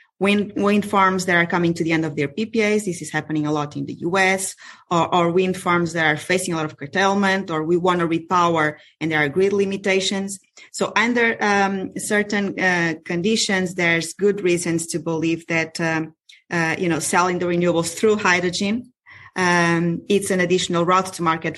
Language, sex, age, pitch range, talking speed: English, female, 20-39, 165-190 Hz, 185 wpm